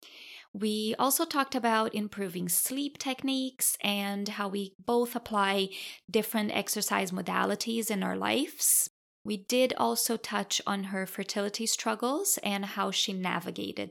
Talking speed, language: 130 wpm, English